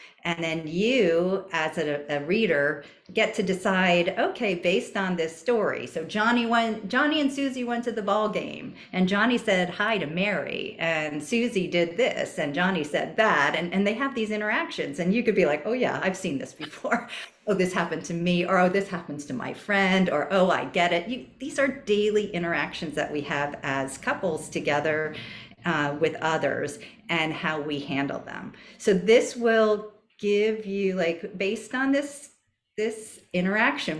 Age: 50-69